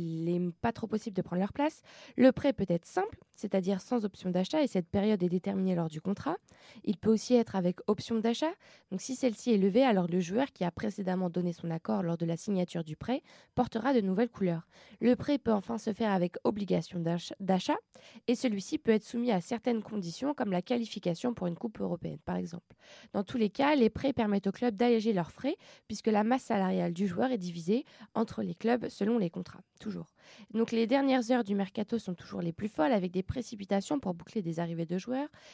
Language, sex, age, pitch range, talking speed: French, female, 20-39, 185-235 Hz, 220 wpm